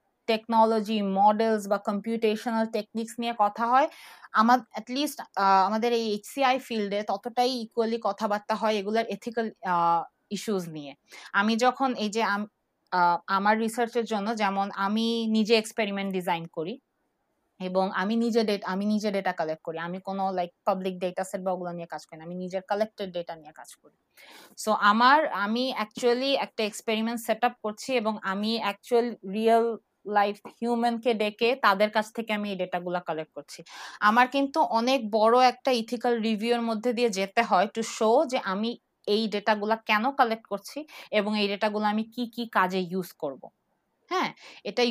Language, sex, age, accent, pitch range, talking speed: Bengali, female, 20-39, native, 200-240 Hz, 150 wpm